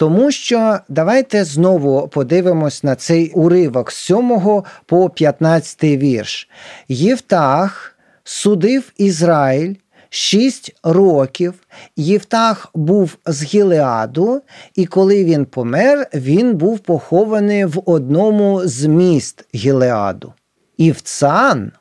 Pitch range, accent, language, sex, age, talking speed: 145-205 Hz, native, Ukrainian, male, 40-59, 95 wpm